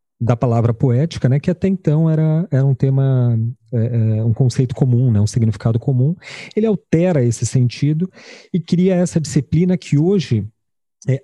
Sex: male